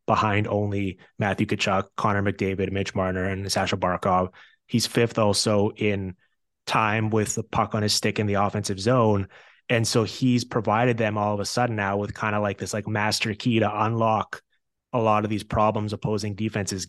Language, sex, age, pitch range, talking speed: English, male, 20-39, 100-115 Hz, 190 wpm